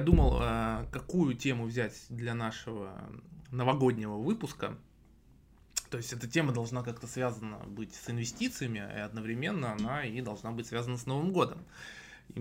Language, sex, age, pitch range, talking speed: Russian, male, 20-39, 115-140 Hz, 140 wpm